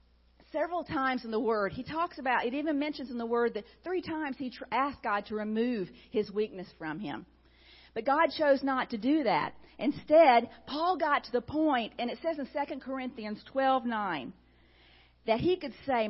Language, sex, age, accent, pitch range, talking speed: English, female, 50-69, American, 180-255 Hz, 190 wpm